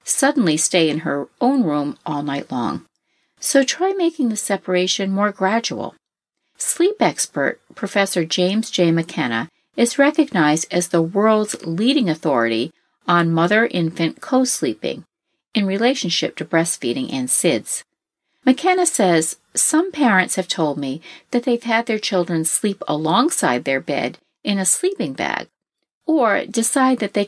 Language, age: English, 50-69